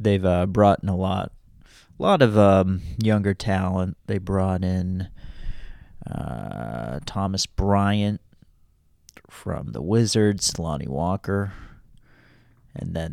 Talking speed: 115 wpm